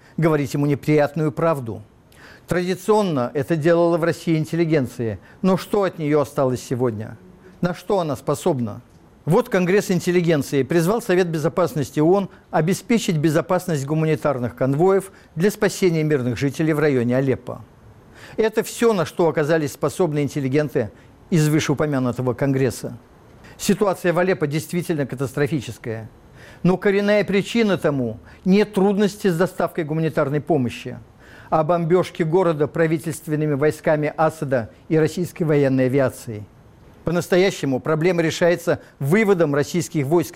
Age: 50-69